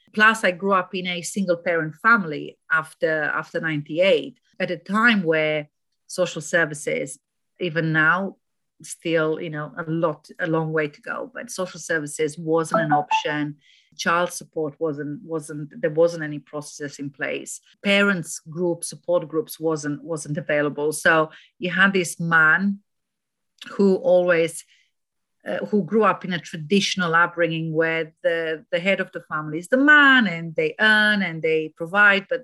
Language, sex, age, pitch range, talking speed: English, female, 40-59, 155-195 Hz, 155 wpm